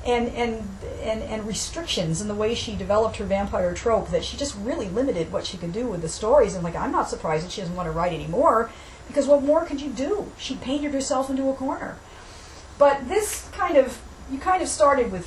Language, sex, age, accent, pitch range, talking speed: English, female, 50-69, American, 170-240 Hz, 230 wpm